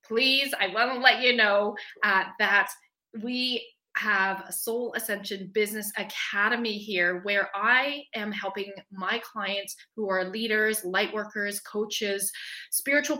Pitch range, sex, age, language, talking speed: 195-245 Hz, female, 20-39, English, 135 wpm